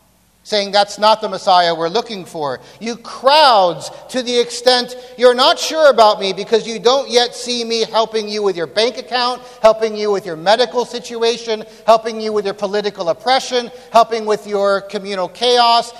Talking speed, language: 175 wpm, English